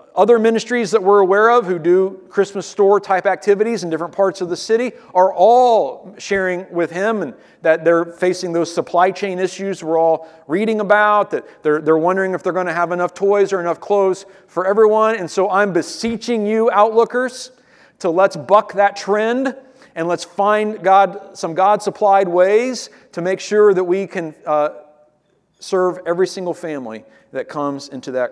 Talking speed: 175 wpm